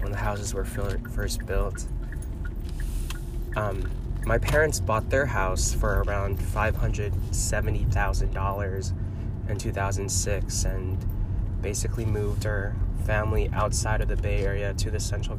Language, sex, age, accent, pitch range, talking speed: English, male, 20-39, American, 95-105 Hz, 115 wpm